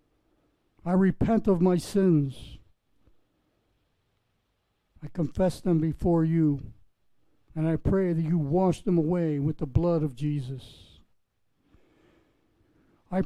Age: 60-79